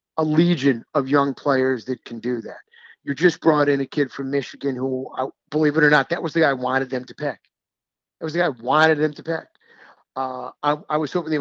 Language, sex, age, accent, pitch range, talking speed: English, male, 50-69, American, 135-170 Hz, 240 wpm